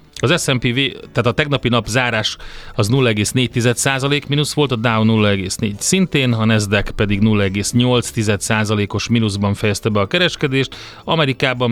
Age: 30-49